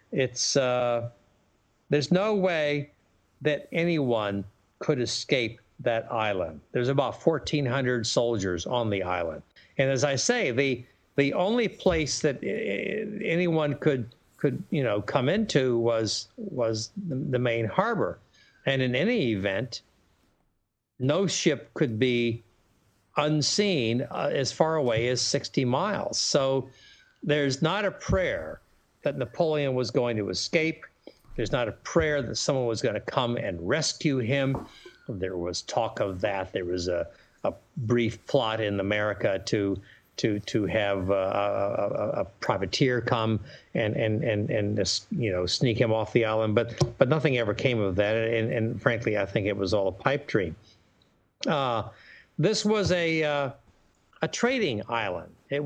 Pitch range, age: 110-150 Hz, 60-79